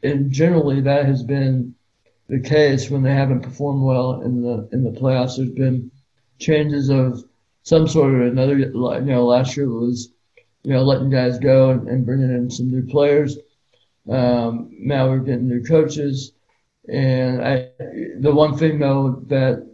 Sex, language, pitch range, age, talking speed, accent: male, English, 120-140 Hz, 60-79, 165 wpm, American